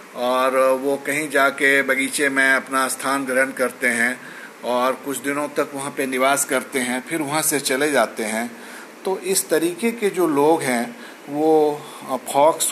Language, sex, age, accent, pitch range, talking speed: Hindi, male, 50-69, native, 125-145 Hz, 165 wpm